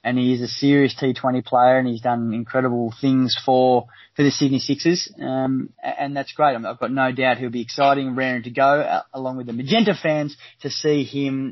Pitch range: 125-145 Hz